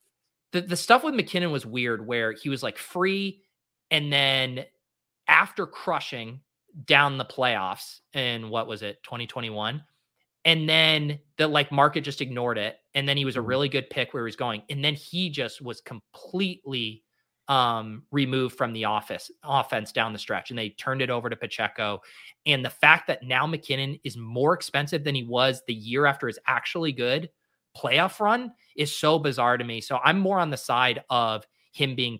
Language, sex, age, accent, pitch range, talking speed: English, male, 20-39, American, 115-145 Hz, 185 wpm